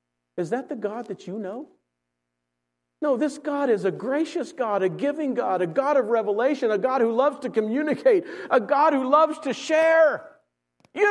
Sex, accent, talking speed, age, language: male, American, 185 wpm, 50-69, English